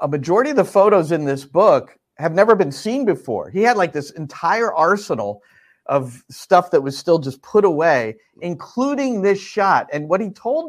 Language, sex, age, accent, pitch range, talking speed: English, male, 50-69, American, 130-185 Hz, 190 wpm